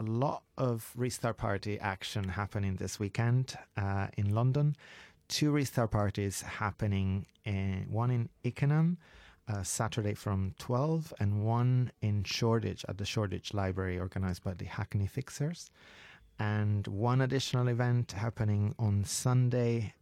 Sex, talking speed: male, 130 wpm